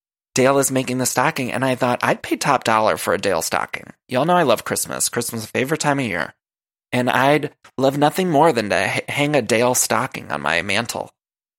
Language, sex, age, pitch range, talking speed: English, male, 20-39, 115-140 Hz, 215 wpm